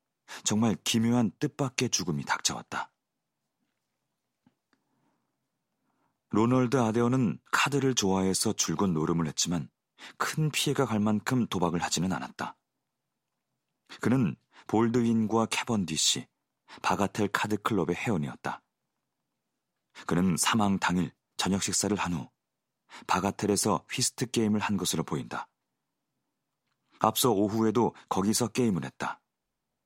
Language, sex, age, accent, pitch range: Korean, male, 40-59, native, 95-120 Hz